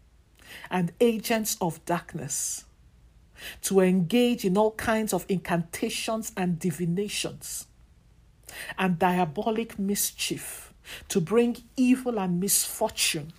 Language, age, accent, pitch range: English, 50-69, Nigerian, 165-220 Hz